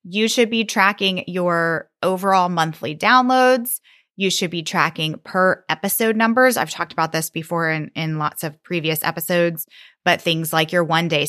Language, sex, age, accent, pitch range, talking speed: English, female, 20-39, American, 155-195 Hz, 170 wpm